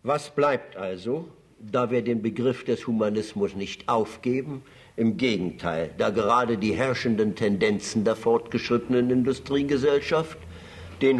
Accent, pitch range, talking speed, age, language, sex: German, 110-140 Hz, 120 wpm, 60-79, German, male